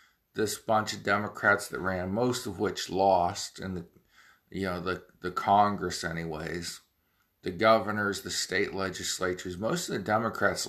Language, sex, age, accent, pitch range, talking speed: English, male, 50-69, American, 90-105 Hz, 150 wpm